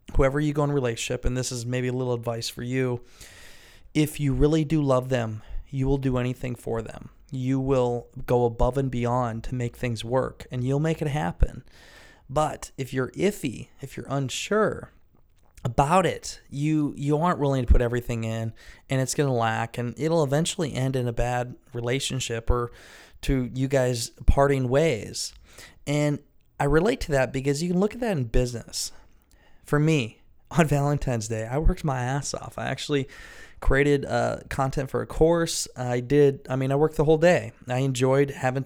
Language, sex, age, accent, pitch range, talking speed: English, male, 20-39, American, 120-140 Hz, 190 wpm